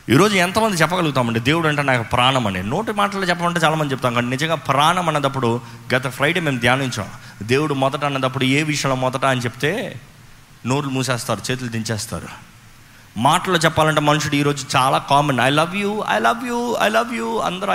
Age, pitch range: 30-49, 130-200 Hz